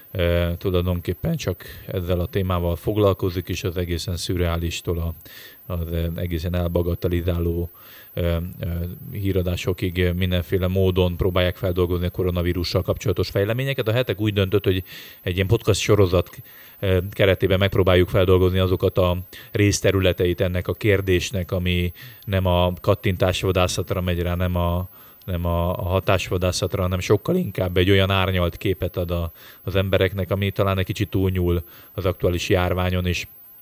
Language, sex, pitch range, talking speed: Hungarian, male, 90-100 Hz, 135 wpm